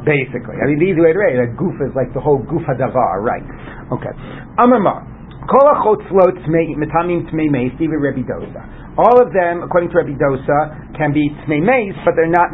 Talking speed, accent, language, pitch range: 140 wpm, American, English, 135-175 Hz